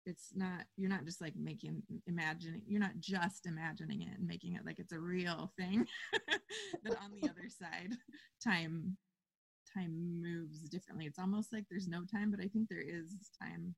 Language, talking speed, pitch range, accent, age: English, 185 wpm, 175-205 Hz, American, 20-39